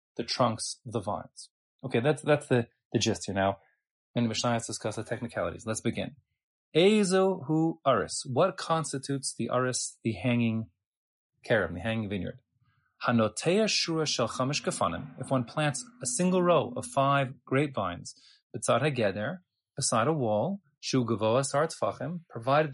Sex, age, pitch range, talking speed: male, 30-49, 115-145 Hz, 145 wpm